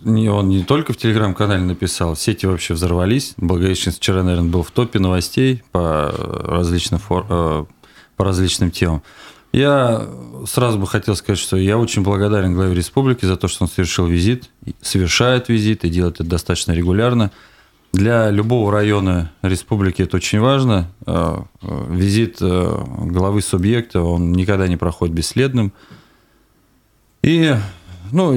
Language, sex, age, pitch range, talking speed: Russian, male, 20-39, 90-115 Hz, 135 wpm